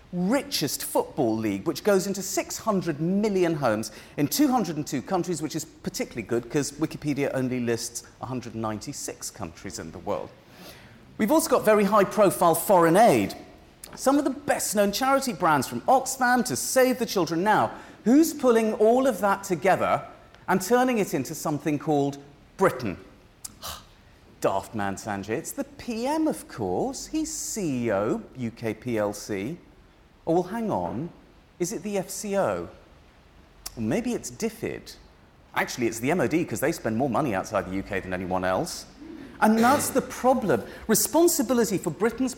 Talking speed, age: 145 wpm, 40-59